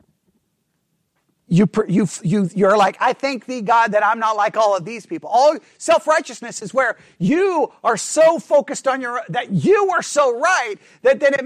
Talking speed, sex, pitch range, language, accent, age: 185 wpm, male, 205-285 Hz, English, American, 40-59